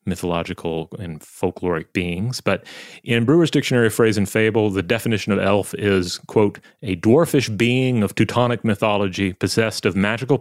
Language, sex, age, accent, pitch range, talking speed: English, male, 30-49, American, 90-105 Hz, 155 wpm